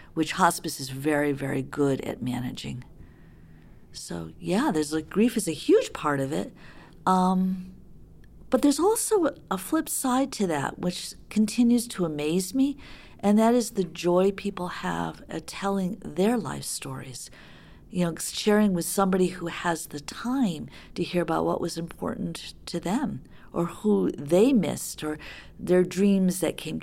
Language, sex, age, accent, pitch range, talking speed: English, female, 50-69, American, 150-200 Hz, 160 wpm